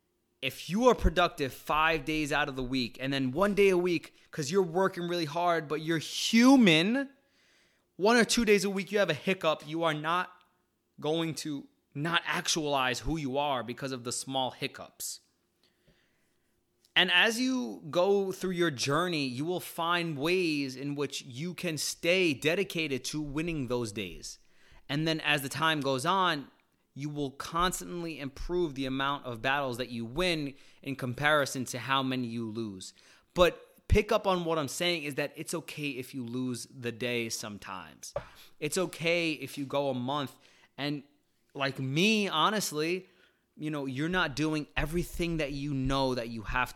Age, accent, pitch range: 20-39, American, 135-175 Hz